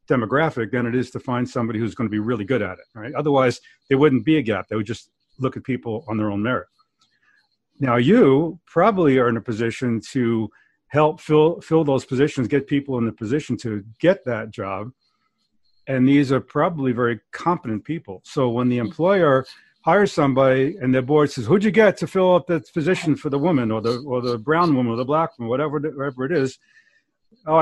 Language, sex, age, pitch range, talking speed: English, male, 50-69, 125-160 Hz, 215 wpm